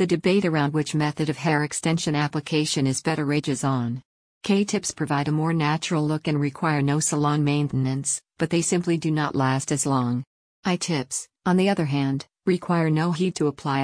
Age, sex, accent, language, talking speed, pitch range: 50-69, female, American, English, 180 wpm, 140-165 Hz